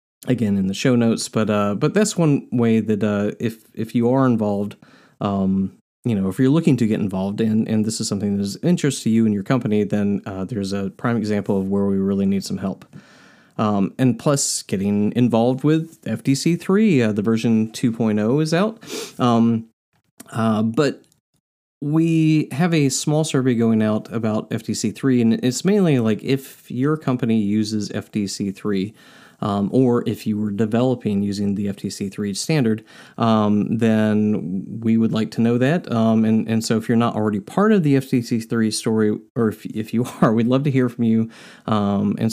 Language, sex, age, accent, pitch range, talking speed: English, male, 30-49, American, 105-125 Hz, 185 wpm